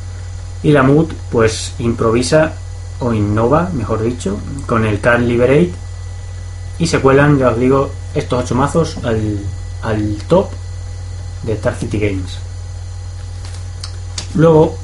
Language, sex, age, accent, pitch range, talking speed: Spanish, male, 30-49, Spanish, 90-120 Hz, 120 wpm